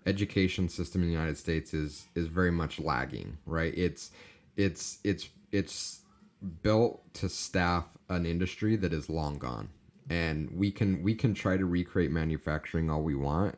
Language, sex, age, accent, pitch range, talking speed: English, male, 30-49, American, 80-100 Hz, 165 wpm